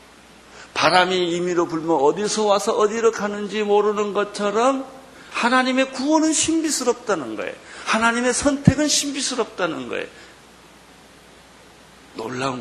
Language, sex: Korean, male